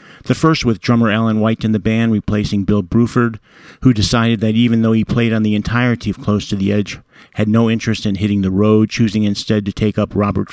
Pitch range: 105-120 Hz